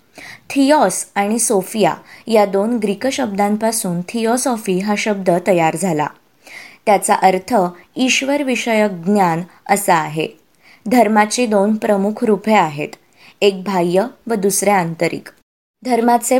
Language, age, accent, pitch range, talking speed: Marathi, 20-39, native, 180-225 Hz, 110 wpm